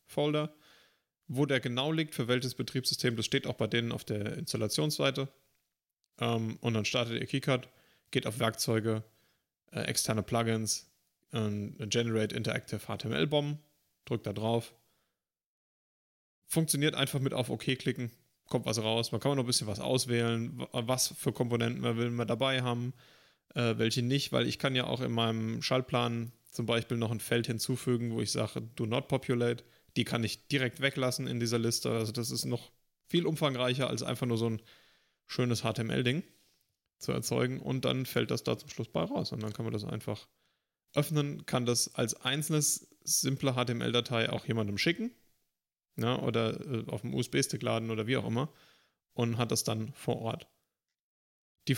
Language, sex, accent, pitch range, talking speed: German, male, German, 110-135 Hz, 170 wpm